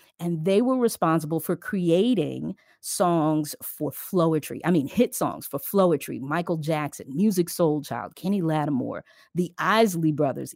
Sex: female